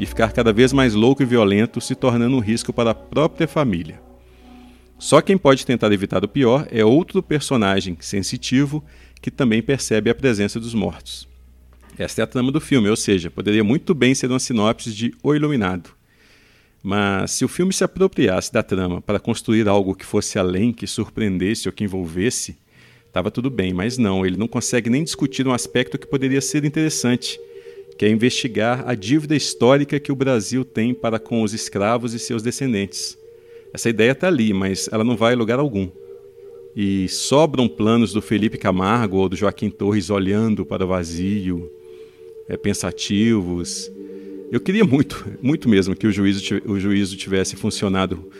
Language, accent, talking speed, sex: Portuguese, Brazilian, 175 wpm, male